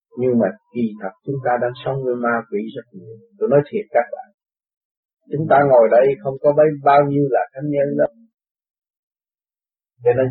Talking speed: 185 wpm